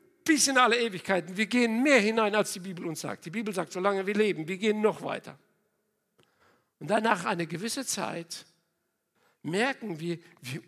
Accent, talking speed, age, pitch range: German, 175 wpm, 60-79, 175-255 Hz